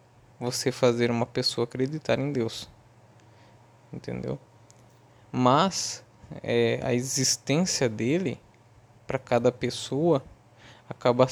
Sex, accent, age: male, Brazilian, 20-39